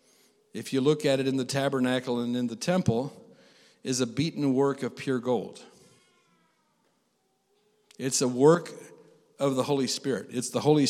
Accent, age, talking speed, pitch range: American, 50-69, 160 wpm, 135-195 Hz